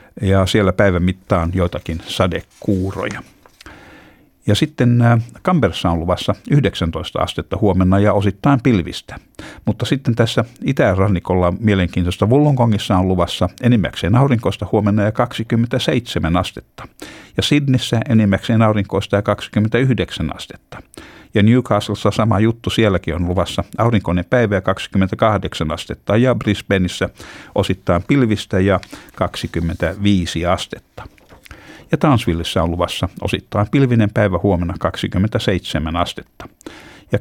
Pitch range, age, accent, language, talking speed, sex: 90-115 Hz, 60-79, native, Finnish, 110 wpm, male